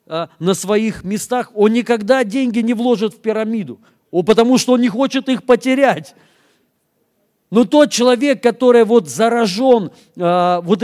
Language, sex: Russian, male